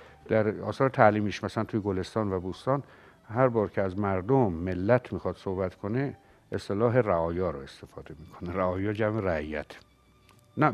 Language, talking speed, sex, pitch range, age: Persian, 145 wpm, male, 85-110 Hz, 60-79